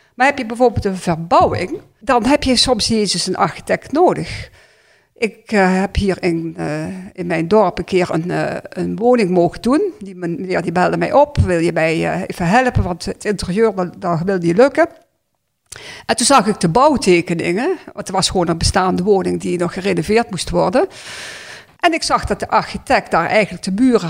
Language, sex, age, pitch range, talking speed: Dutch, female, 50-69, 175-230 Hz, 190 wpm